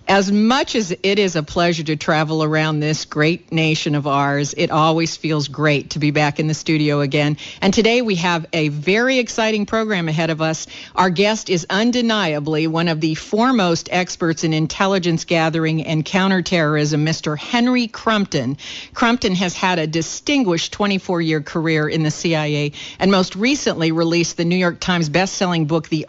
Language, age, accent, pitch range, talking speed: English, 50-69, American, 155-195 Hz, 170 wpm